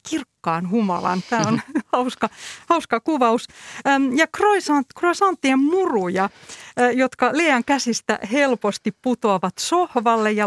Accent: native